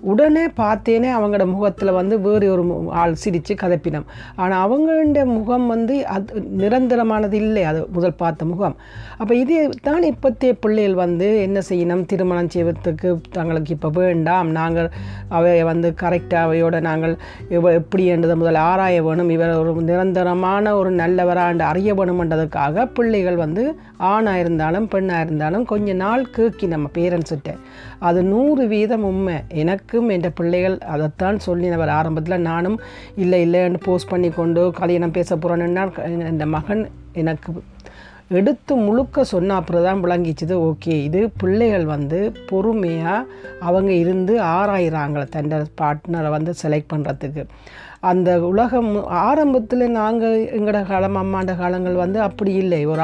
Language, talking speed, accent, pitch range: Tamil, 130 wpm, native, 165-210 Hz